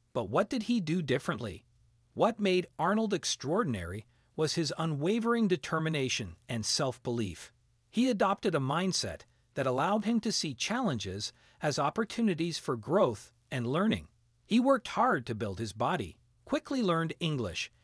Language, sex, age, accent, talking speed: Italian, male, 40-59, American, 140 wpm